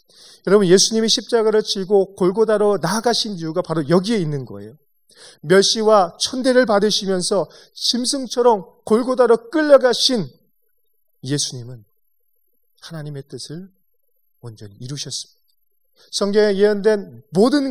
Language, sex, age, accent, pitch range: Korean, male, 30-49, native, 160-230 Hz